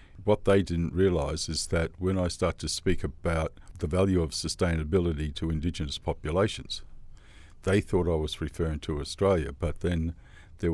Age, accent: 50-69, Australian